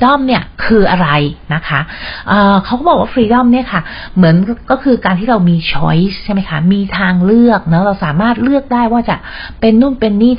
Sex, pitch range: female, 175-230 Hz